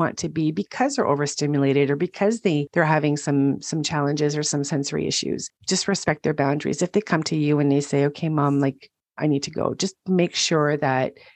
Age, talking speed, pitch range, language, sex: 40-59, 215 wpm, 145-180 Hz, English, female